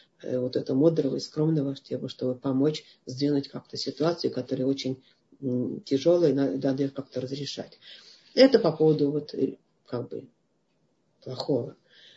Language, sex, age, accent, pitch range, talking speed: Russian, female, 40-59, native, 145-170 Hz, 120 wpm